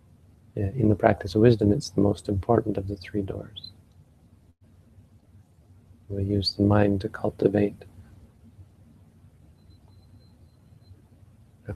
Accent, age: American, 30-49